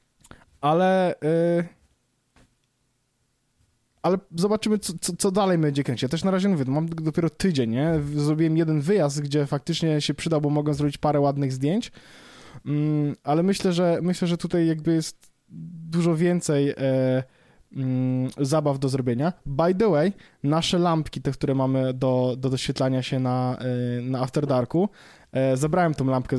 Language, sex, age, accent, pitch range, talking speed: Polish, male, 20-39, native, 135-165 Hz, 160 wpm